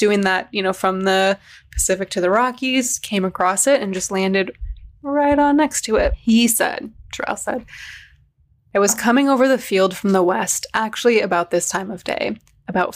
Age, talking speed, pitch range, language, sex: 20-39, 190 wpm, 185-210 Hz, English, female